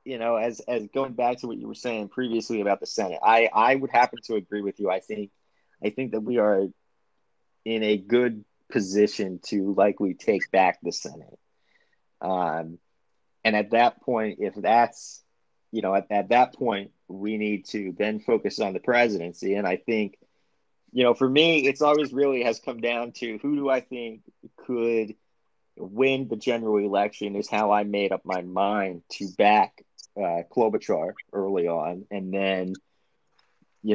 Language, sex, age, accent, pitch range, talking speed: English, male, 30-49, American, 100-120 Hz, 175 wpm